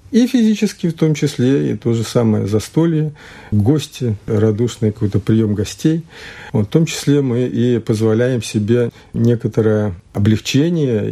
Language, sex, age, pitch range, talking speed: Russian, male, 50-69, 105-140 Hz, 130 wpm